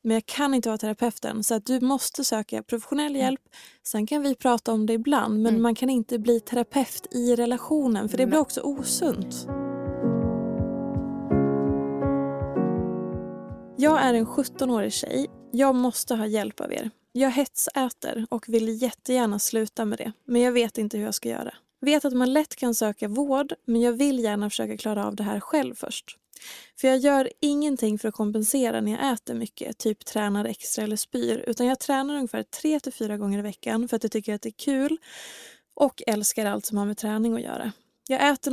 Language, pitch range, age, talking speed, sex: English, 215-260 Hz, 20-39, 190 wpm, female